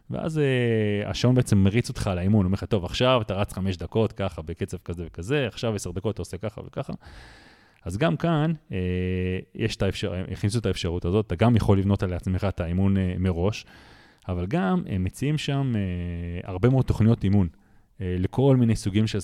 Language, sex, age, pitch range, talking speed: Hebrew, male, 30-49, 95-115 Hz, 190 wpm